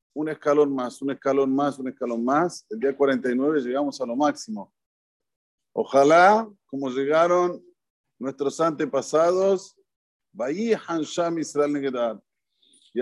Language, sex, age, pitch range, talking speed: Spanish, male, 50-69, 140-175 Hz, 115 wpm